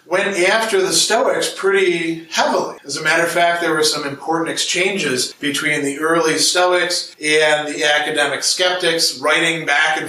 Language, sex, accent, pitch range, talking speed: English, male, American, 150-195 Hz, 160 wpm